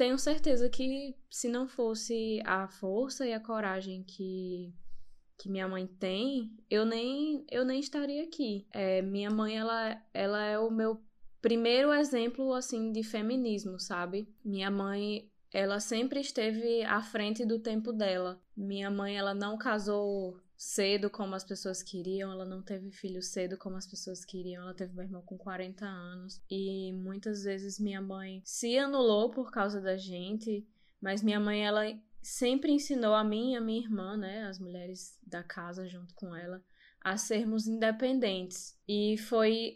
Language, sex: Portuguese, female